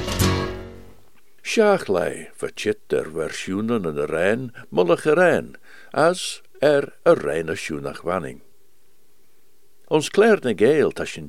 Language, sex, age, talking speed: English, male, 60-79, 80 wpm